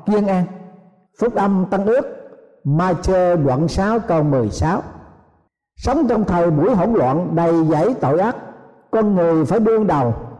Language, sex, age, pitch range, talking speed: Vietnamese, male, 60-79, 160-220 Hz, 160 wpm